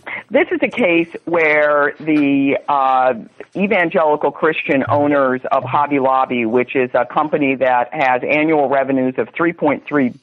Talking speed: 135 wpm